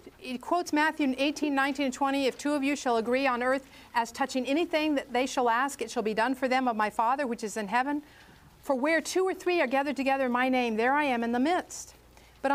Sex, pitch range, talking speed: female, 245-310 Hz, 255 wpm